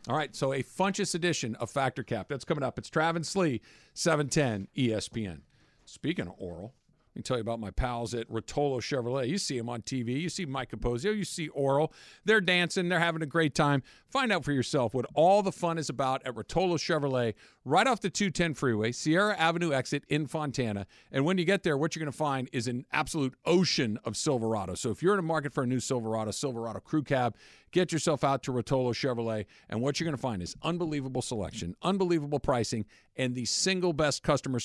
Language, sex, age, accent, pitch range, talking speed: English, male, 50-69, American, 115-155 Hz, 215 wpm